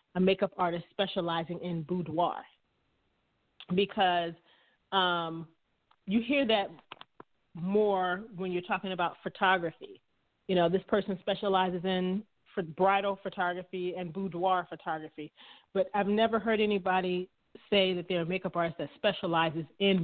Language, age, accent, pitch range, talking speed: English, 30-49, American, 180-220 Hz, 130 wpm